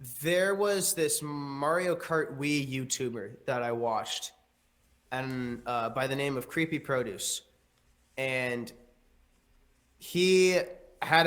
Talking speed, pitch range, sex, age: 110 wpm, 130-170 Hz, male, 20-39